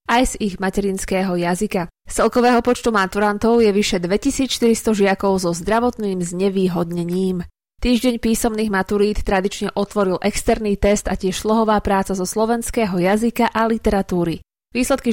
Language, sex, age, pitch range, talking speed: Slovak, female, 20-39, 185-230 Hz, 125 wpm